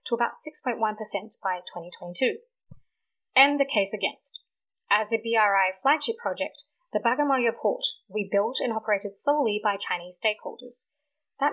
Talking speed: 135 wpm